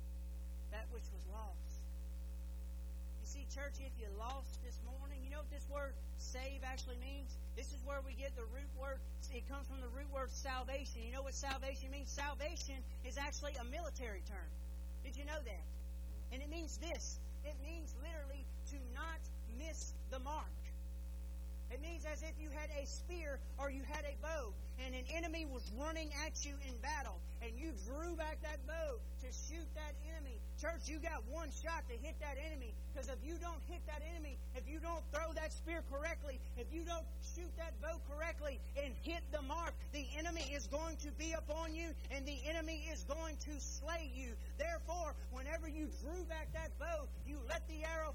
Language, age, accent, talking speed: English, 40-59, American, 195 wpm